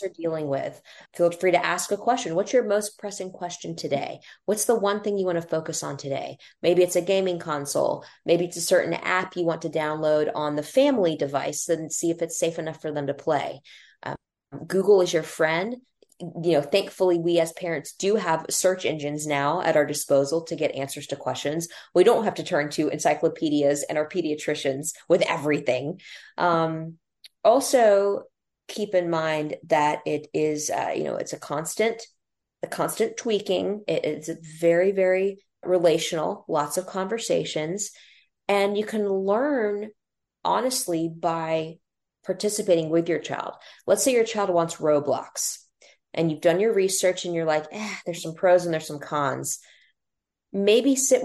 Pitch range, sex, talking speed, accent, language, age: 155-200 Hz, female, 170 wpm, American, English, 20-39